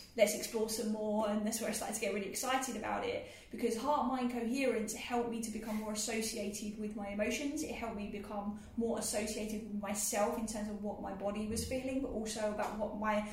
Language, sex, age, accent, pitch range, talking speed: English, female, 10-29, British, 210-230 Hz, 215 wpm